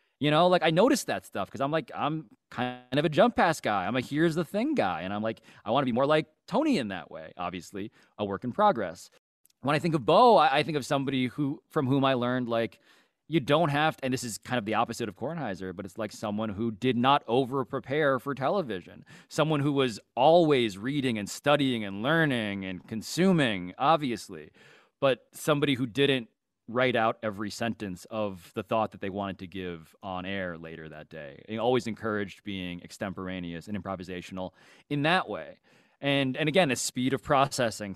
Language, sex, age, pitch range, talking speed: English, male, 30-49, 100-140 Hz, 205 wpm